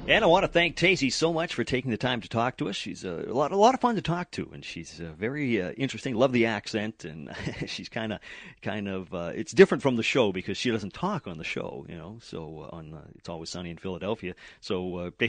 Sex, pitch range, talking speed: male, 95-130 Hz, 265 wpm